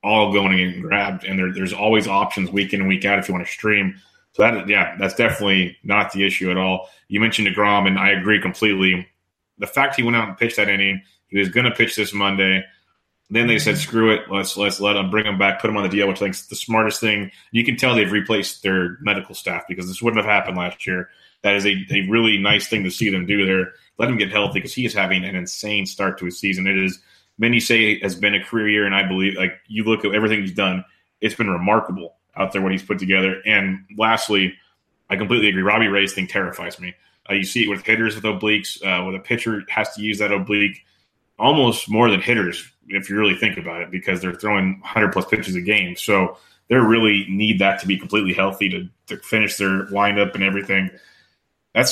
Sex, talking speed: male, 240 wpm